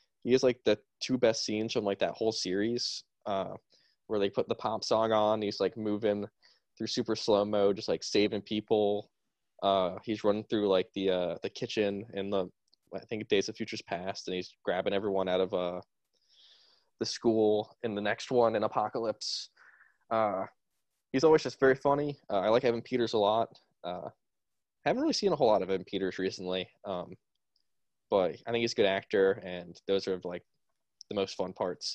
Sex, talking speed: male, 195 wpm